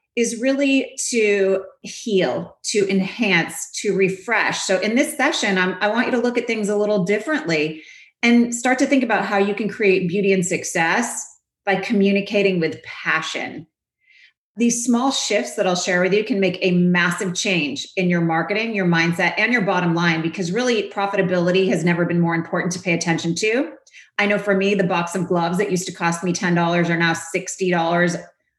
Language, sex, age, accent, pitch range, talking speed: English, female, 30-49, American, 180-210 Hz, 185 wpm